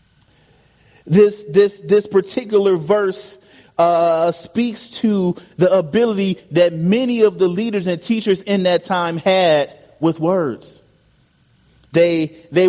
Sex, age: male, 30-49